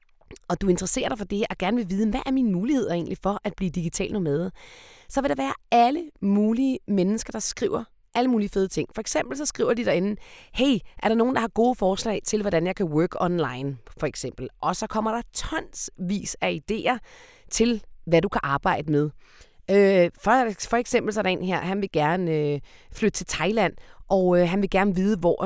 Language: Danish